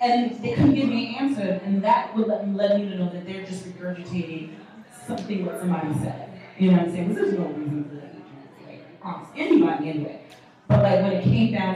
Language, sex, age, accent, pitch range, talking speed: English, female, 30-49, American, 175-220 Hz, 235 wpm